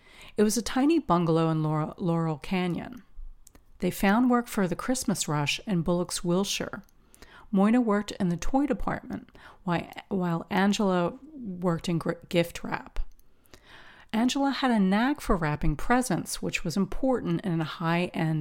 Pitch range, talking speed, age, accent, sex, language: 165-215 Hz, 140 wpm, 40-59, American, female, English